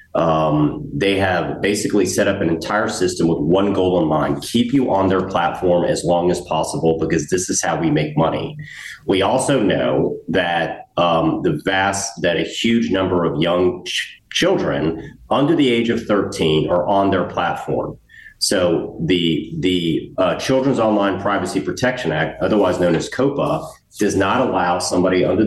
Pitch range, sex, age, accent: 85-100 Hz, male, 40-59, American